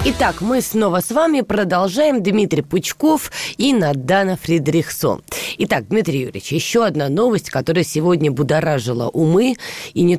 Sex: female